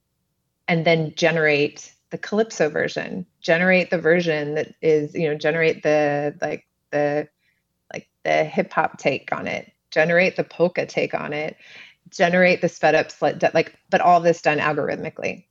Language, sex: English, female